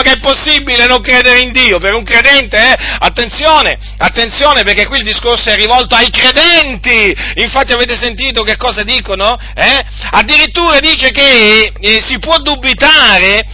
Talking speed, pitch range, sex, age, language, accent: 155 wpm, 230-280 Hz, male, 40-59, Italian, native